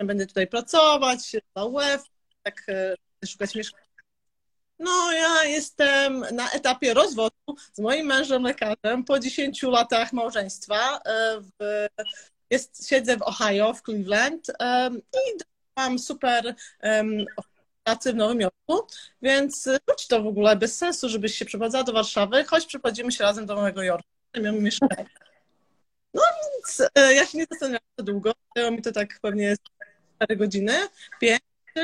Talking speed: 140 wpm